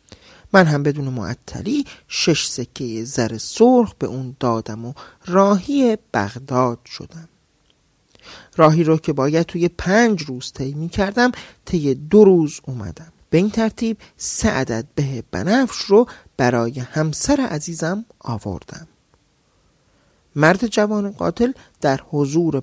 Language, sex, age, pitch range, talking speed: Persian, male, 40-59, 125-180 Hz, 120 wpm